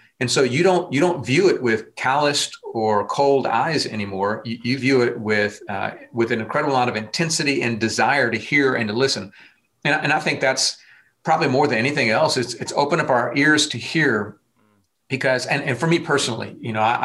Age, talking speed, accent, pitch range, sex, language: 40-59, 210 wpm, American, 115-140 Hz, male, English